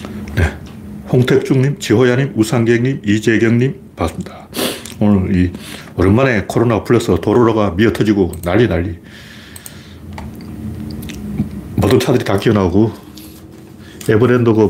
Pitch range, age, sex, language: 100-125 Hz, 40-59, male, Korean